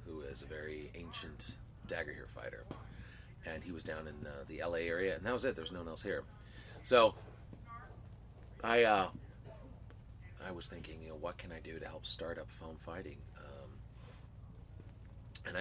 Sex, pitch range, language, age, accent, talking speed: male, 90-115 Hz, English, 30-49, American, 175 wpm